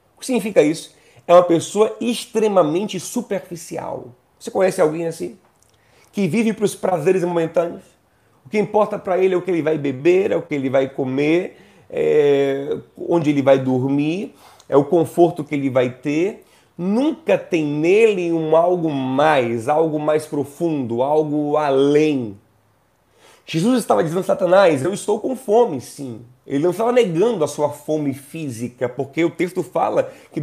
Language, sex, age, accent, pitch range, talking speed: Portuguese, male, 30-49, Brazilian, 135-185 Hz, 160 wpm